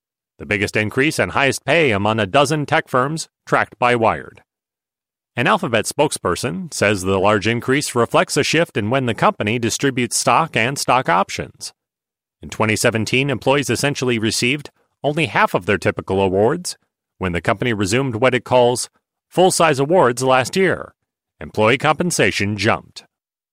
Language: English